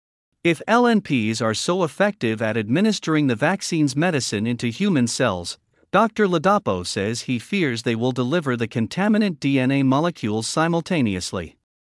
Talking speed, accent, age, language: 130 wpm, American, 50-69, English